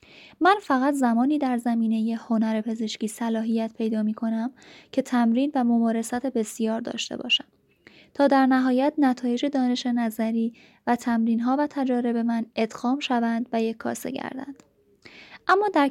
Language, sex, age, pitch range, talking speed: Persian, female, 20-39, 230-270 Hz, 145 wpm